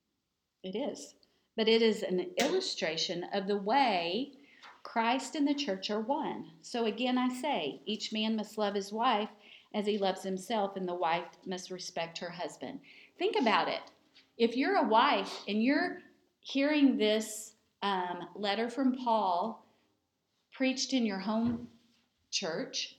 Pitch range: 195-250 Hz